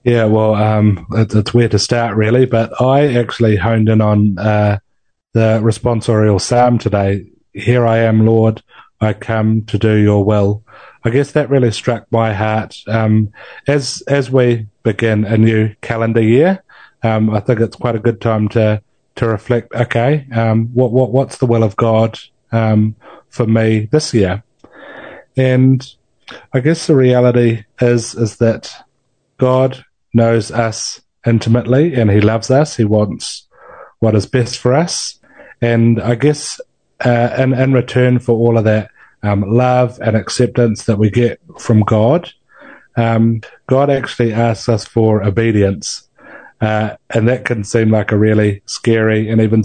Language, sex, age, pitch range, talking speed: English, male, 30-49, 110-125 Hz, 160 wpm